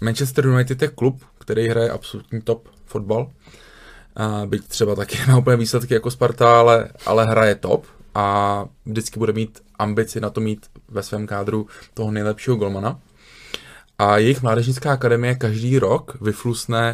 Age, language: 20-39, Czech